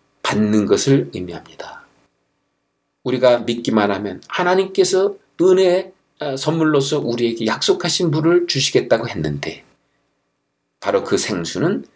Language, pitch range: Korean, 115-165 Hz